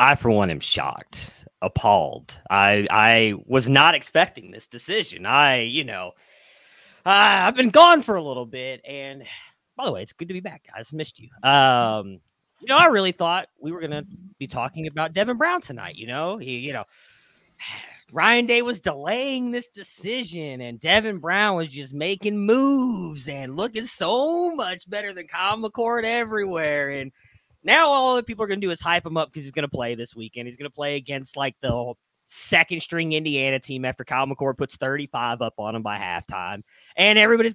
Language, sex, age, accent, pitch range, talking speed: English, male, 30-49, American, 125-200 Hz, 195 wpm